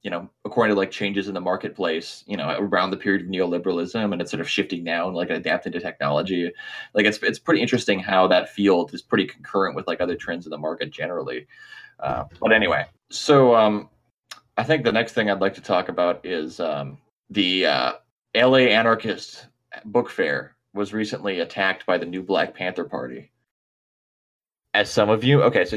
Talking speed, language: 195 wpm, English